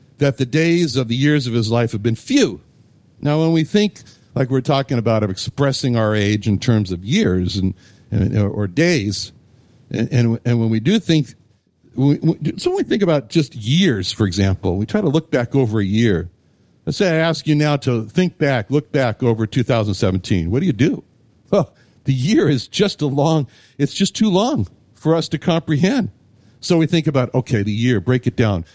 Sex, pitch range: male, 110-160 Hz